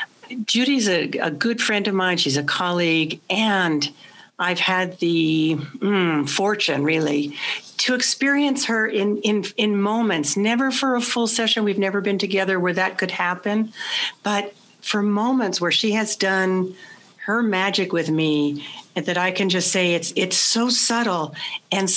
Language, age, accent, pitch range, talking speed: English, 60-79, American, 170-215 Hz, 160 wpm